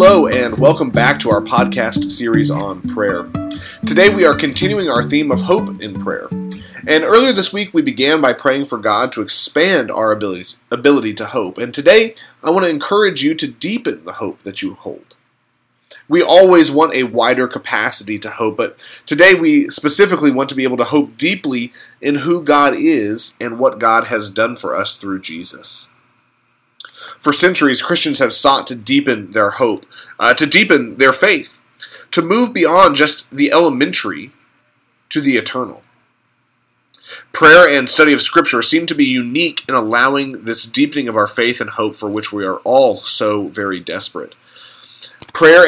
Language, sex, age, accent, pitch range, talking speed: English, male, 30-49, American, 120-180 Hz, 175 wpm